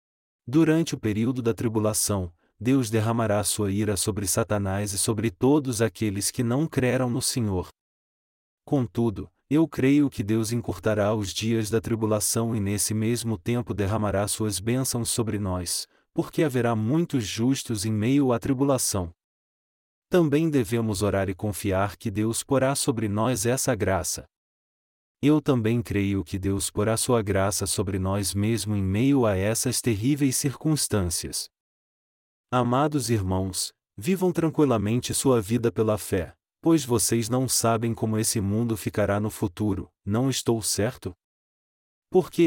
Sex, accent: male, Brazilian